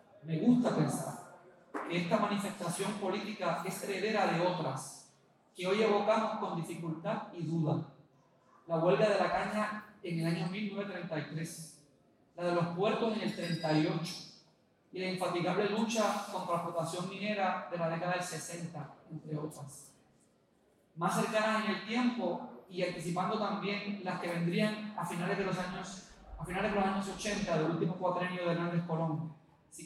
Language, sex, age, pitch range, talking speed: Spanish, male, 30-49, 165-205 Hz, 155 wpm